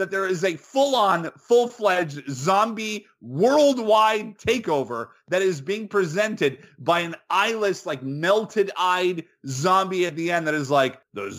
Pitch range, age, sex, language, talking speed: 145-205 Hz, 30-49, male, English, 135 wpm